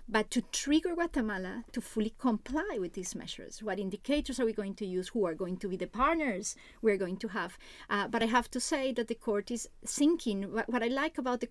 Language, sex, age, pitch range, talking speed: English, female, 30-49, 210-255 Hz, 235 wpm